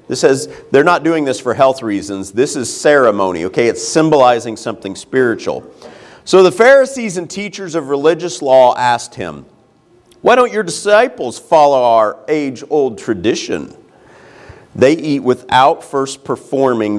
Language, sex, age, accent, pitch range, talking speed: English, male, 40-59, American, 110-155 Hz, 145 wpm